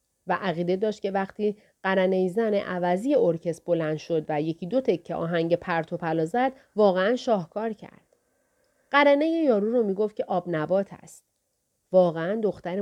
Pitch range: 180-255 Hz